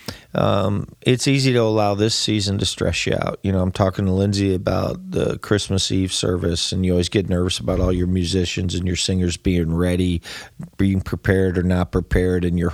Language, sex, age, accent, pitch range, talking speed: English, male, 40-59, American, 90-110 Hz, 205 wpm